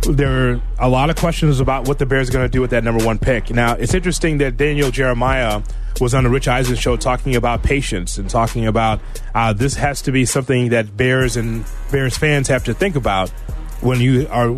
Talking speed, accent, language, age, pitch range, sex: 225 wpm, American, English, 30-49, 115-145 Hz, male